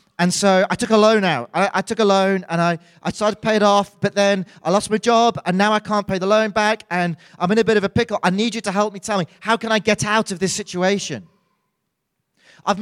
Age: 30-49